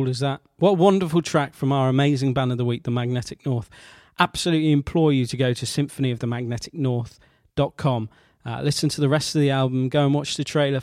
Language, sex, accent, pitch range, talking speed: English, male, British, 130-155 Hz, 210 wpm